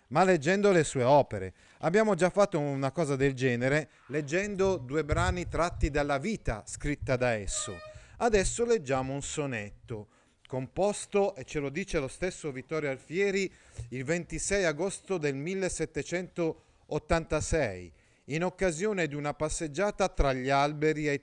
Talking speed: 135 wpm